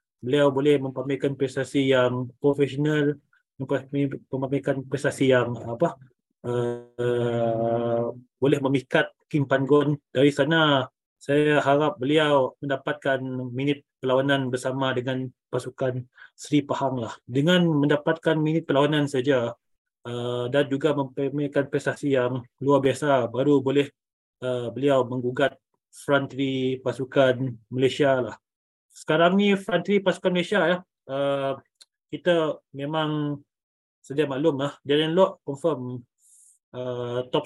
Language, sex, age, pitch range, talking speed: Malay, male, 20-39, 130-150 Hz, 110 wpm